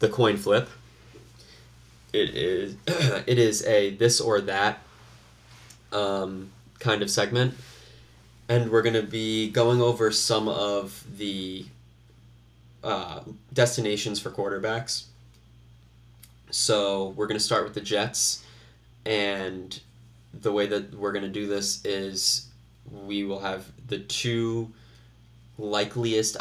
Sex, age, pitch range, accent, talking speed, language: male, 20-39, 100-120 Hz, American, 120 wpm, English